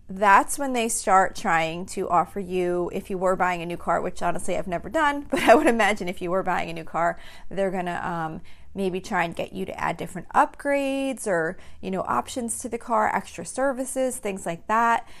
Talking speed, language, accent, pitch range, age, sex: 215 wpm, English, American, 175-205 Hz, 30-49, female